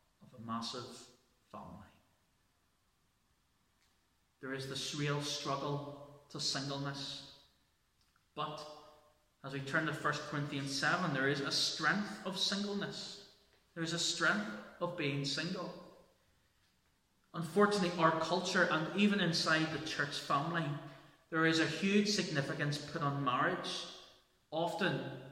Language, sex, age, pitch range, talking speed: English, male, 30-49, 135-165 Hz, 115 wpm